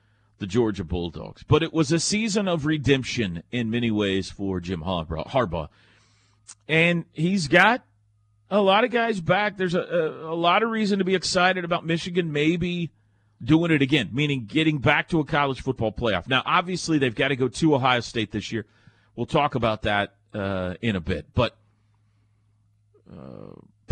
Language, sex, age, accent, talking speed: English, male, 40-59, American, 175 wpm